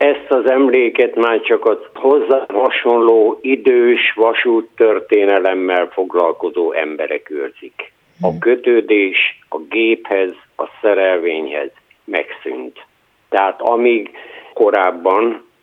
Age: 60-79